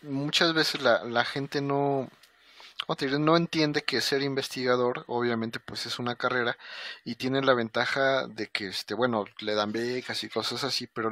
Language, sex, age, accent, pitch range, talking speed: Spanish, male, 30-49, Mexican, 115-140 Hz, 165 wpm